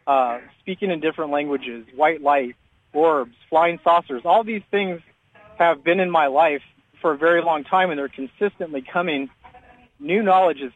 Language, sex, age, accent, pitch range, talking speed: English, male, 30-49, American, 140-185 Hz, 165 wpm